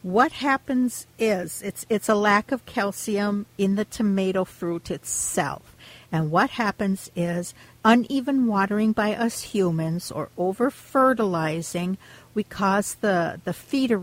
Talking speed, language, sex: 135 wpm, English, female